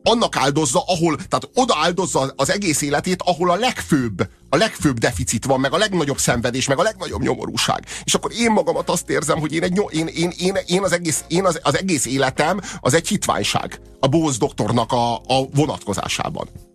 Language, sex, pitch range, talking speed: Hungarian, male, 105-150 Hz, 190 wpm